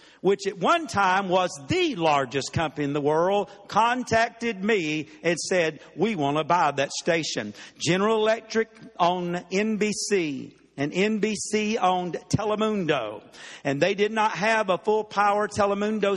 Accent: American